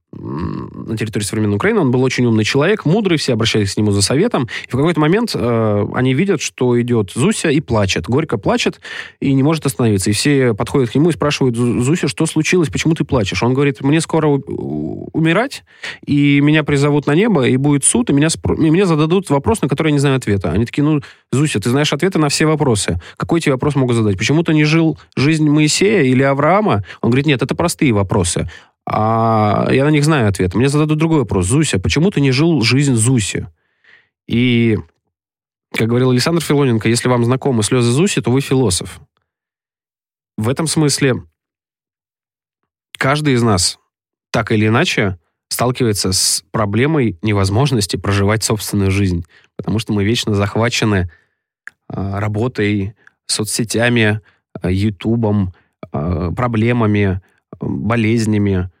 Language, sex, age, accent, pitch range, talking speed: Russian, male, 20-39, native, 105-145 Hz, 160 wpm